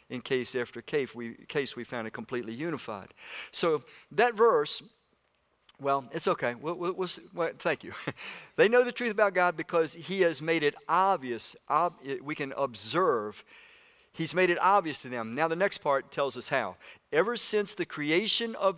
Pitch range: 135-190 Hz